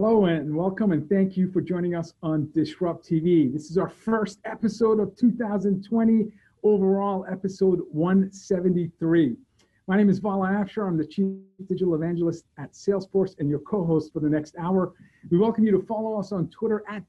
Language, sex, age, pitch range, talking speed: English, male, 50-69, 175-220 Hz, 175 wpm